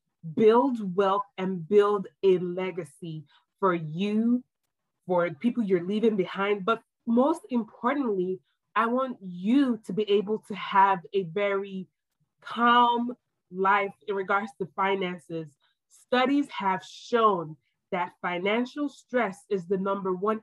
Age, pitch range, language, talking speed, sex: 20-39, 185-225 Hz, English, 125 wpm, female